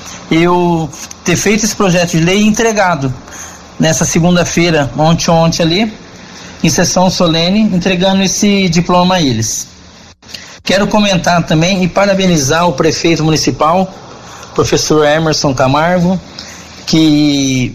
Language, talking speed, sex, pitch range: Portuguese, 115 wpm, male, 150-185 Hz